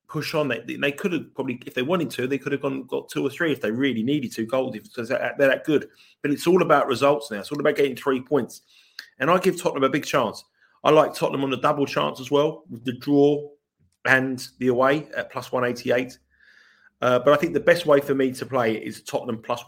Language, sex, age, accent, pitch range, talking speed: English, male, 30-49, British, 120-145 Hz, 250 wpm